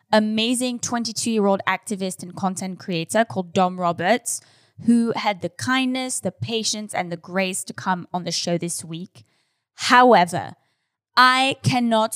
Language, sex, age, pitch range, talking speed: English, female, 10-29, 185-230 Hz, 140 wpm